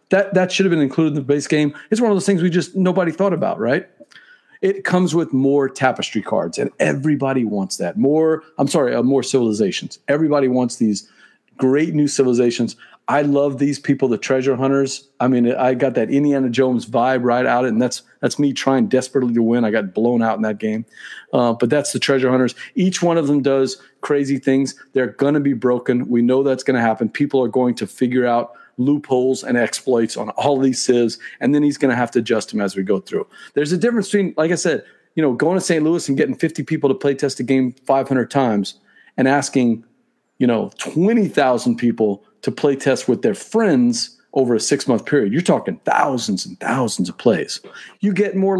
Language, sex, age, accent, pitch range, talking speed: English, male, 40-59, American, 125-155 Hz, 220 wpm